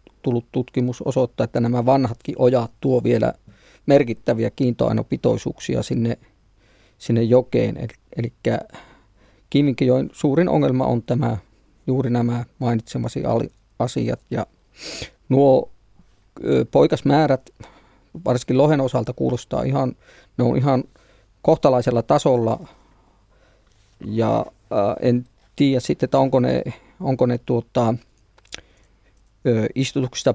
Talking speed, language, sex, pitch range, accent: 100 wpm, Finnish, male, 115-130 Hz, native